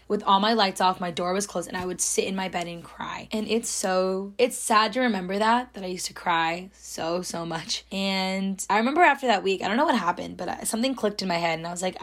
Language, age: English, 10-29